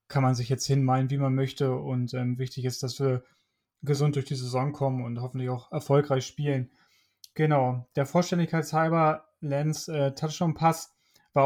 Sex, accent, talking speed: male, German, 160 wpm